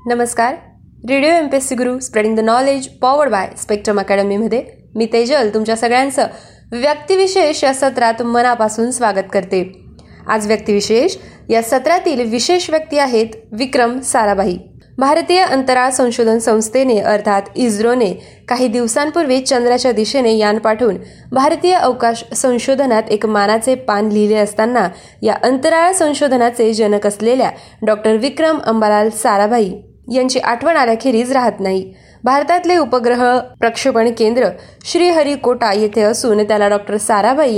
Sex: female